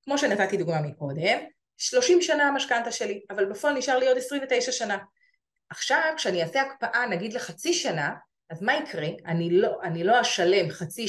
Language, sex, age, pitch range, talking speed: Hebrew, female, 30-49, 170-250 Hz, 170 wpm